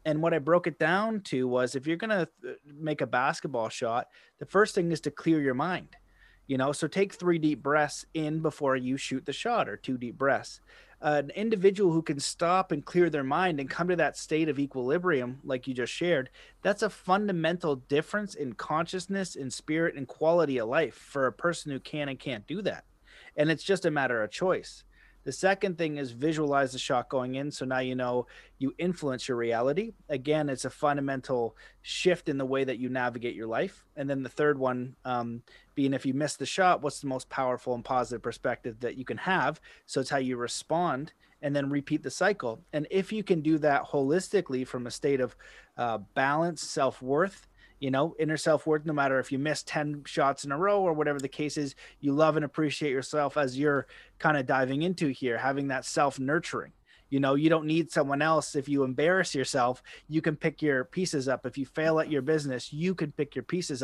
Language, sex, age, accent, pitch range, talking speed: English, male, 30-49, American, 130-160 Hz, 215 wpm